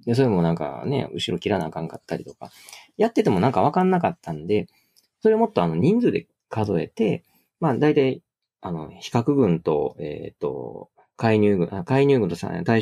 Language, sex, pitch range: Japanese, male, 85-145 Hz